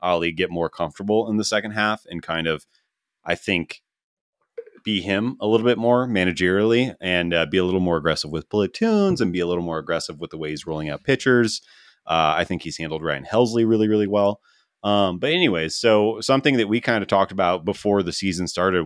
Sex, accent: male, American